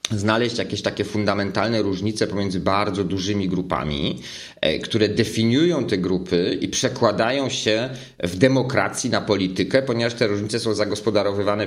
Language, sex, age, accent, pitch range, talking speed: Polish, male, 40-59, native, 100-125 Hz, 130 wpm